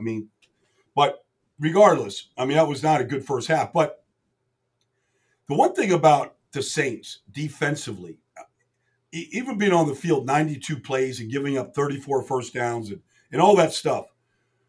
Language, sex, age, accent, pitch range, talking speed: English, male, 50-69, American, 135-175 Hz, 160 wpm